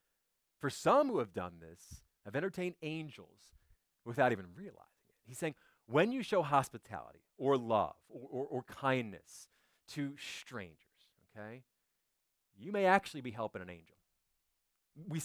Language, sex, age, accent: English, male, 30-49, American